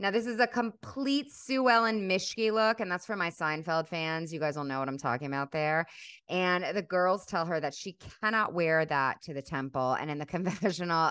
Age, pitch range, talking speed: 30-49, 150-205 Hz, 220 wpm